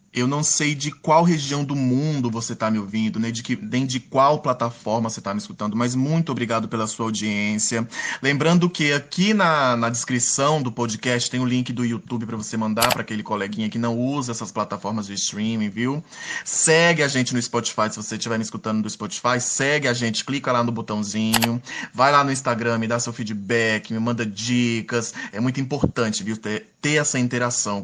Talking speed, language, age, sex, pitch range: 205 wpm, Portuguese, 20-39, male, 115-140 Hz